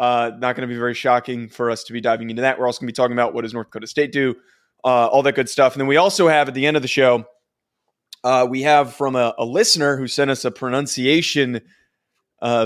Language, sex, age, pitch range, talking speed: English, male, 20-39, 120-145 Hz, 265 wpm